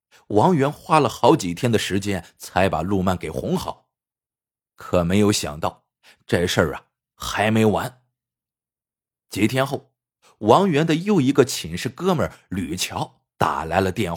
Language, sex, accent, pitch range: Chinese, male, native, 105-135 Hz